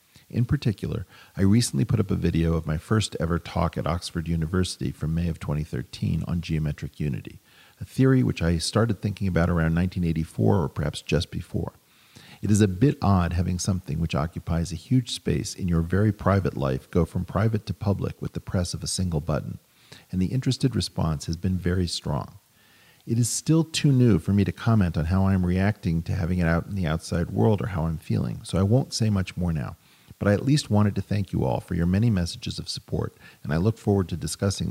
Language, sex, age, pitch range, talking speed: English, male, 40-59, 80-105 Hz, 220 wpm